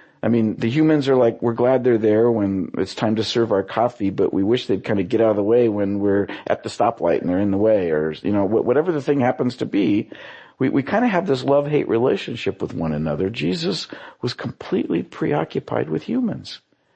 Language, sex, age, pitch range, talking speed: English, male, 50-69, 110-145 Hz, 225 wpm